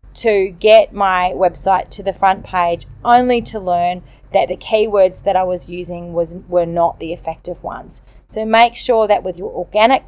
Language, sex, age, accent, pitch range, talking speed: English, female, 30-49, Australian, 185-220 Hz, 185 wpm